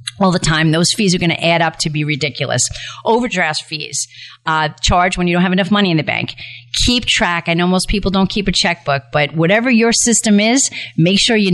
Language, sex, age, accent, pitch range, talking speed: English, female, 40-59, American, 150-190 Hz, 230 wpm